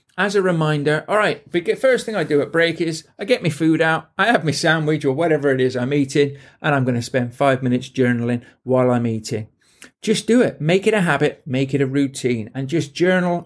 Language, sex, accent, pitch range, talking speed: English, male, British, 130-165 Hz, 230 wpm